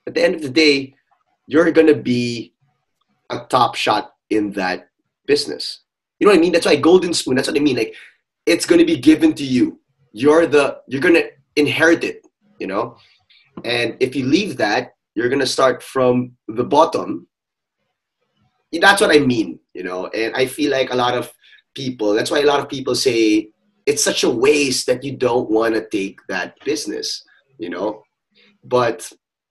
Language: English